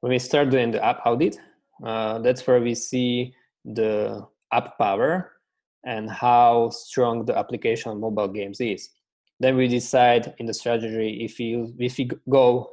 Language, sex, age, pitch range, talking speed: English, male, 20-39, 110-125 Hz, 155 wpm